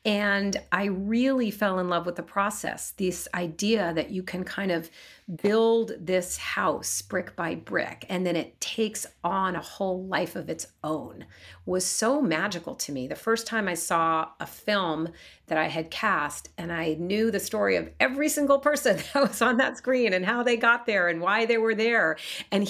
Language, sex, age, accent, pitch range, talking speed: English, female, 40-59, American, 170-220 Hz, 195 wpm